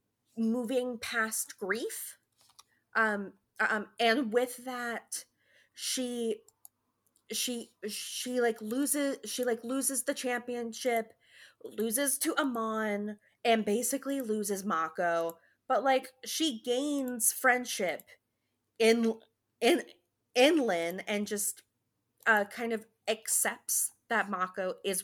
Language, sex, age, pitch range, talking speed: English, female, 20-39, 200-250 Hz, 105 wpm